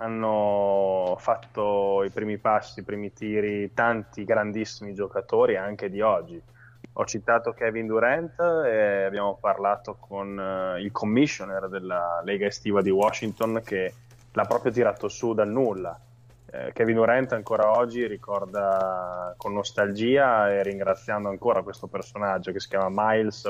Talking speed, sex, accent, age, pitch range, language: 135 wpm, male, native, 10-29, 100-120 Hz, Italian